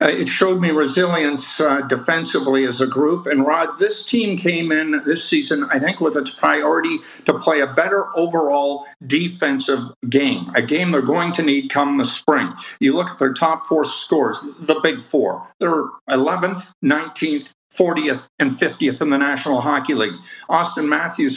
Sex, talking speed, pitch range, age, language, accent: male, 170 wpm, 140-185 Hz, 50-69, English, American